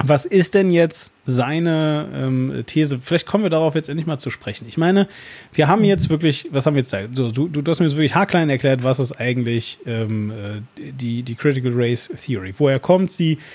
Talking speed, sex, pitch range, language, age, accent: 215 wpm, male, 125-155 Hz, German, 30-49, German